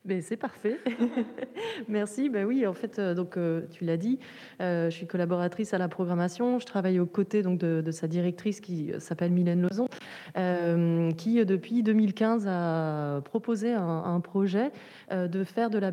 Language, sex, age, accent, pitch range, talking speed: French, female, 30-49, French, 180-220 Hz, 160 wpm